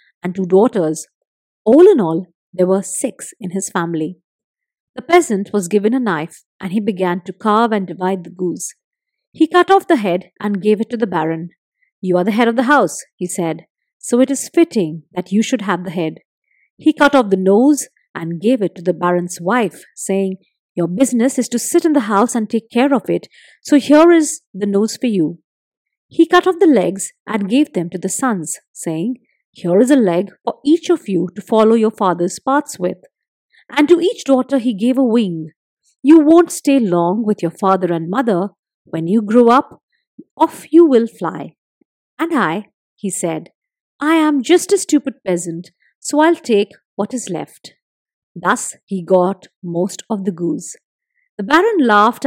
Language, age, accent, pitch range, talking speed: English, 50-69, Indian, 180-275 Hz, 190 wpm